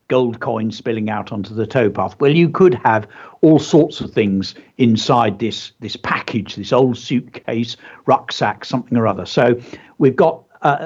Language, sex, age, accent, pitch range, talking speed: English, male, 60-79, British, 110-135 Hz, 165 wpm